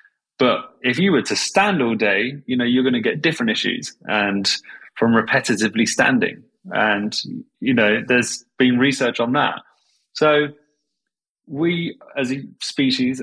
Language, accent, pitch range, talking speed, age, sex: English, British, 105-125 Hz, 150 wpm, 30-49, male